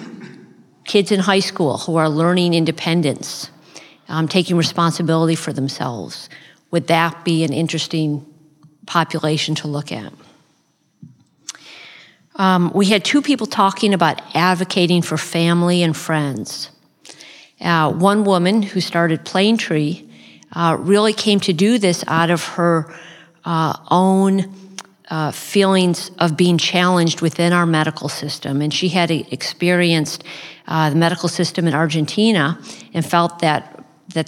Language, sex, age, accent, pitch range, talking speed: English, female, 50-69, American, 155-180 Hz, 130 wpm